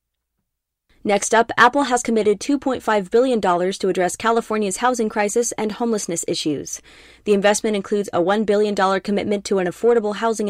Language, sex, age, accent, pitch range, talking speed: English, female, 20-39, American, 185-230 Hz, 150 wpm